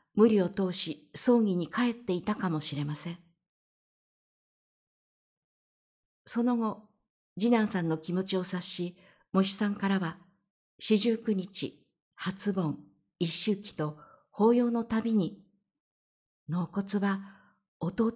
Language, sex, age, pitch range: Japanese, female, 50-69, 170-215 Hz